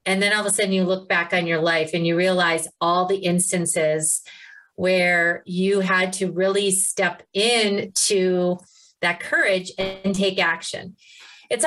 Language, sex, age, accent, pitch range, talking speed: English, female, 30-49, American, 185-255 Hz, 165 wpm